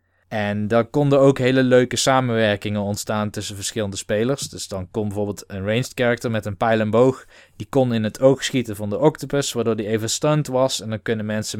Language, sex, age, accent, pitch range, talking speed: Dutch, male, 20-39, Dutch, 105-125 Hz, 210 wpm